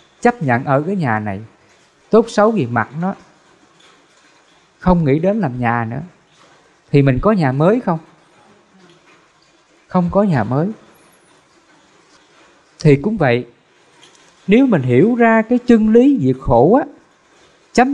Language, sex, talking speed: English, male, 135 wpm